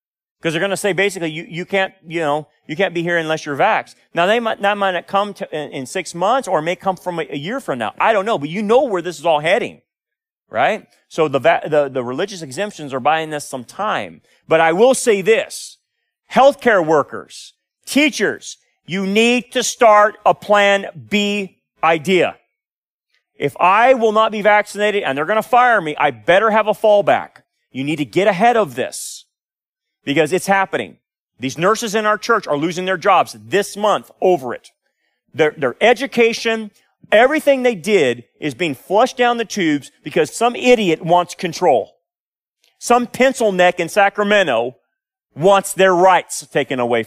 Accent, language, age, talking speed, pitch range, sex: American, English, 30-49, 185 wpm, 160-230 Hz, male